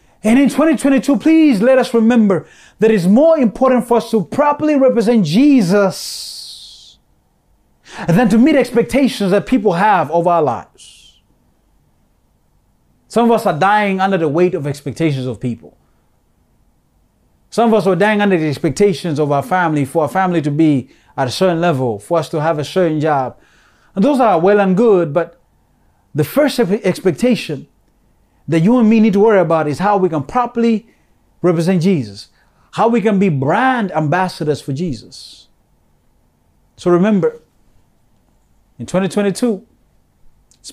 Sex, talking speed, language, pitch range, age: male, 155 wpm, English, 150-220 Hz, 30-49